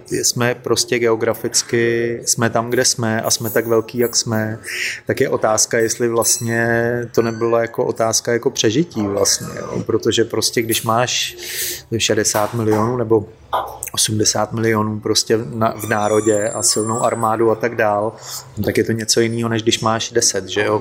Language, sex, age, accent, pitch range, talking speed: Czech, male, 30-49, native, 110-120 Hz, 155 wpm